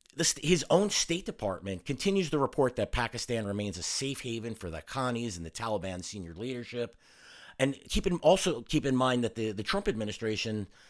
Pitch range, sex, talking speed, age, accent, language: 95-130 Hz, male, 180 wpm, 50-69, American, English